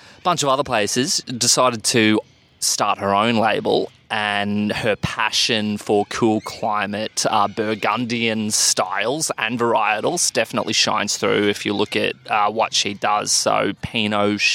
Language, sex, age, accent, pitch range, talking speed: English, male, 20-39, Australian, 105-115 Hz, 140 wpm